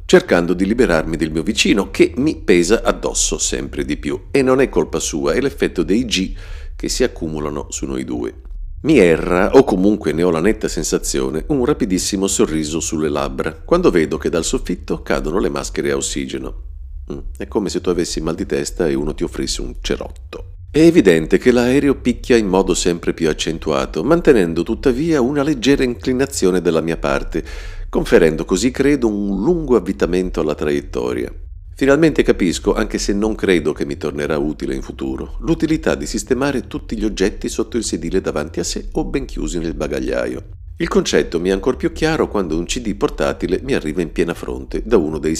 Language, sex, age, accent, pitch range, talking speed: Italian, male, 50-69, native, 80-115 Hz, 185 wpm